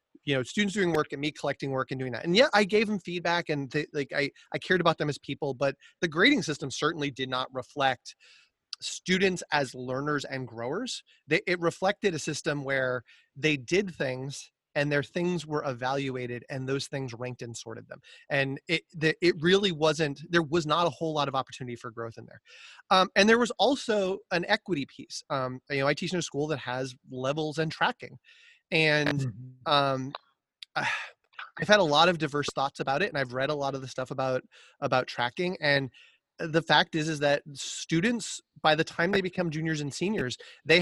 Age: 30-49